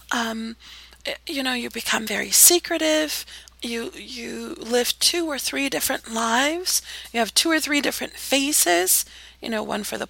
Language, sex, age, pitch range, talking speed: English, female, 30-49, 225-310 Hz, 160 wpm